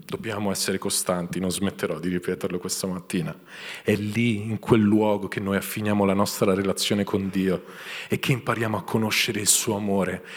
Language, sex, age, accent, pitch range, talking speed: Italian, male, 40-59, native, 95-115 Hz, 175 wpm